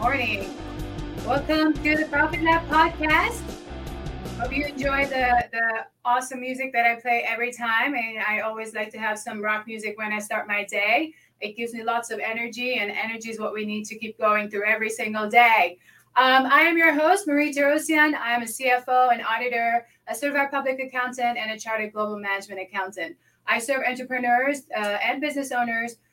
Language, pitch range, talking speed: English, 215-270 Hz, 190 wpm